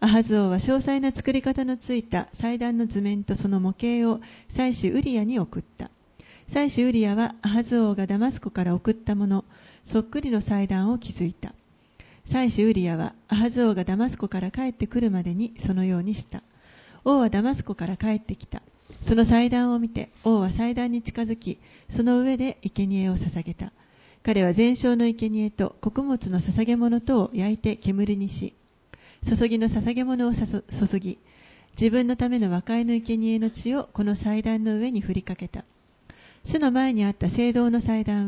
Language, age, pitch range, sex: Japanese, 40-59, 200-240 Hz, female